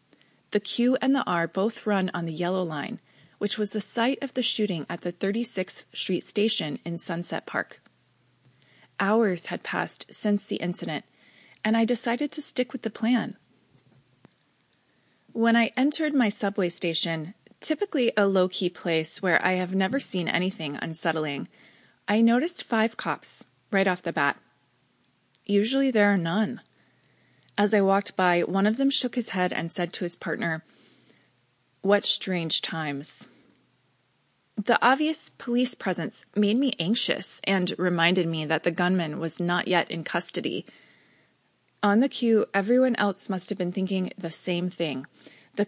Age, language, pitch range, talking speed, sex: 20-39, English, 175-230 Hz, 155 wpm, female